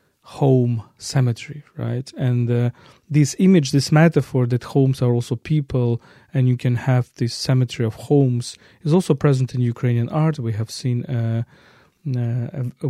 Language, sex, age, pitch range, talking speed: English, male, 40-59, 120-135 Hz, 160 wpm